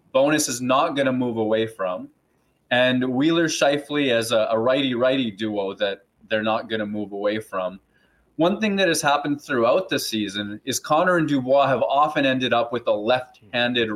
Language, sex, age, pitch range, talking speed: English, male, 20-39, 115-155 Hz, 190 wpm